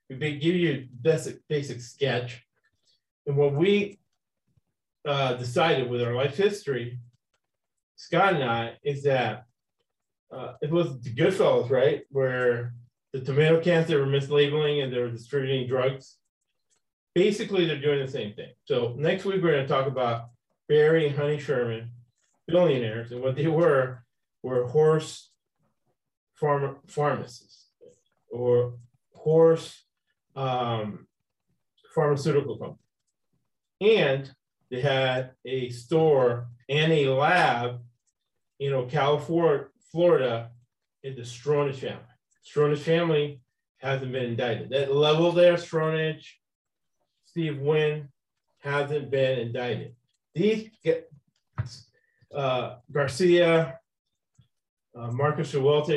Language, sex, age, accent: English, male, 30-49, American